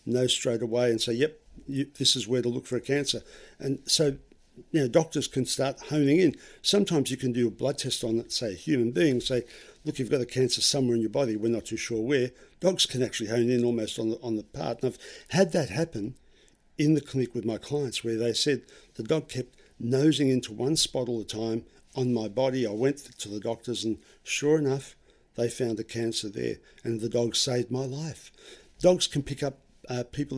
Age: 50-69